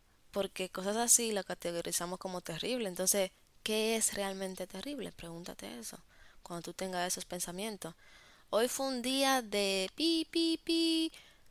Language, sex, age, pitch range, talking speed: Spanish, female, 20-39, 175-220 Hz, 140 wpm